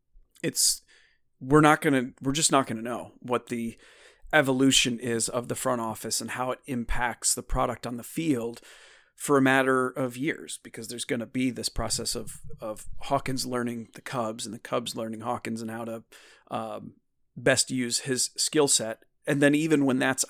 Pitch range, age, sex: 120-140 Hz, 40-59, male